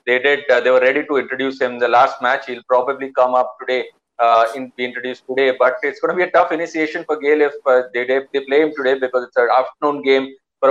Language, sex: English, male